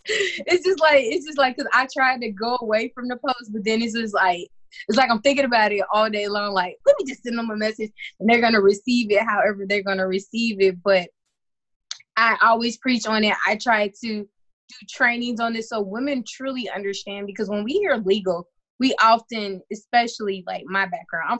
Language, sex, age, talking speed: English, female, 20-39, 220 wpm